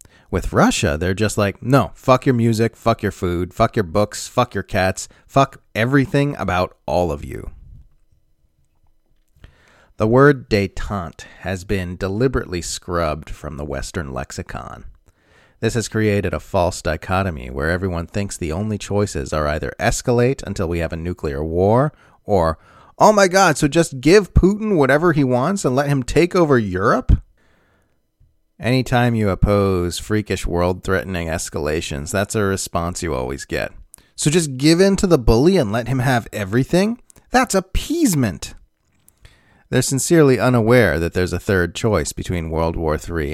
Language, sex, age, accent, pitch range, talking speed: English, male, 30-49, American, 85-120 Hz, 155 wpm